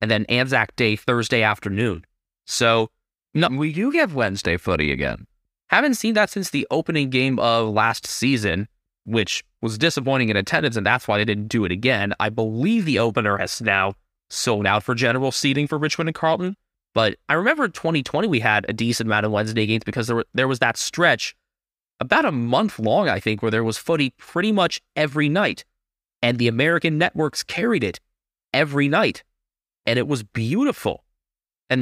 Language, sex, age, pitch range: English, male, 20-39, 110-155 Hz